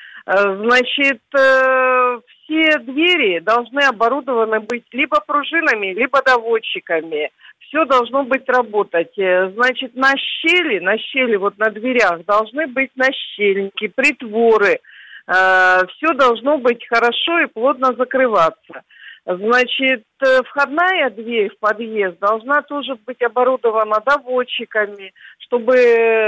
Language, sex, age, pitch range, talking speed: Russian, female, 50-69, 210-270 Hz, 100 wpm